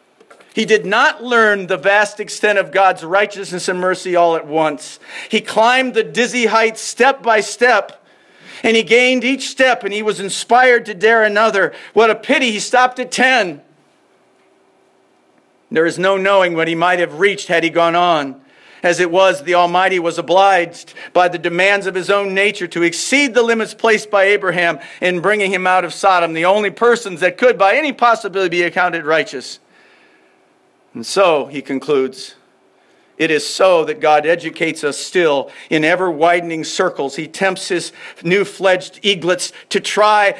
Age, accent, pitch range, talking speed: 50-69, American, 160-215 Hz, 170 wpm